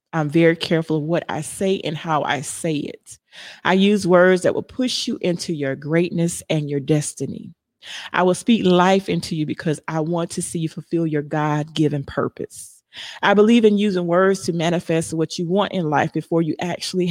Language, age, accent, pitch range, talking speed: English, 30-49, American, 150-180 Hz, 195 wpm